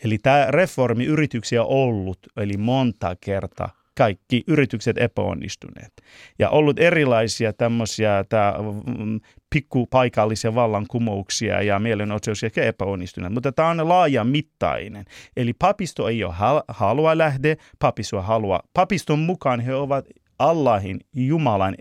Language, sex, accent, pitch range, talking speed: Finnish, male, native, 110-145 Hz, 110 wpm